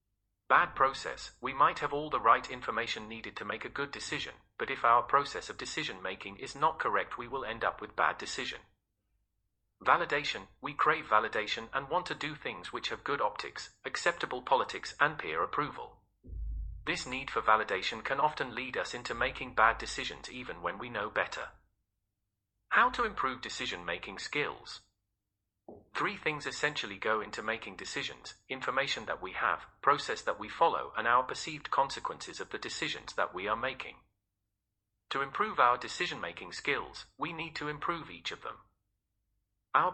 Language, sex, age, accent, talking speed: English, male, 40-59, British, 165 wpm